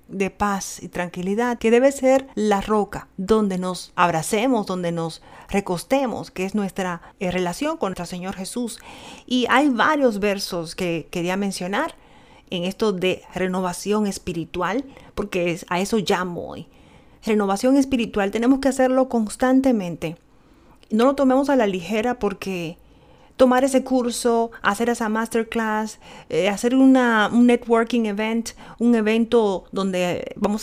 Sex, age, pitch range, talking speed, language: female, 40-59, 195-240 Hz, 135 wpm, Spanish